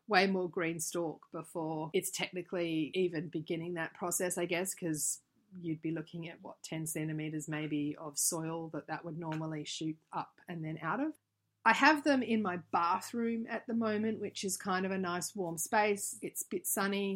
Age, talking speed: 30-49, 190 wpm